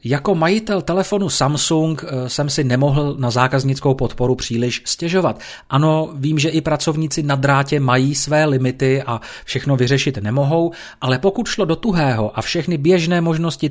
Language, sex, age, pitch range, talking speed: Czech, male, 40-59, 125-160 Hz, 155 wpm